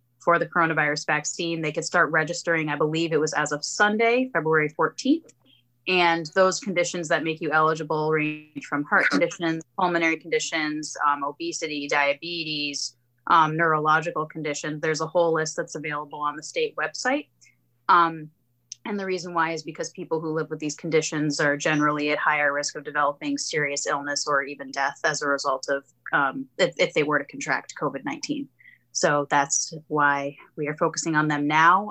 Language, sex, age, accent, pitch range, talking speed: English, female, 30-49, American, 145-170 Hz, 175 wpm